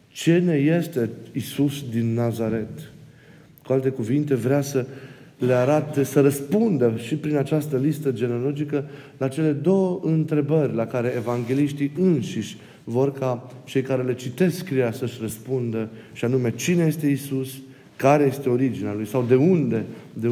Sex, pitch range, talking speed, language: male, 115-140 Hz, 150 wpm, Romanian